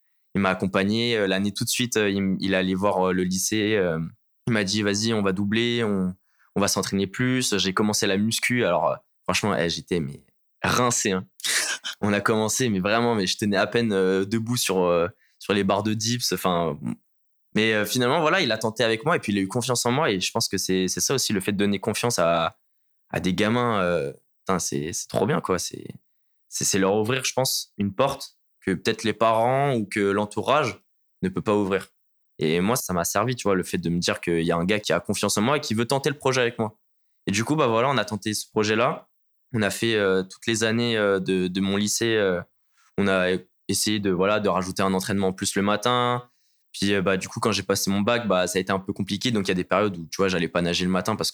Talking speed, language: 250 wpm, French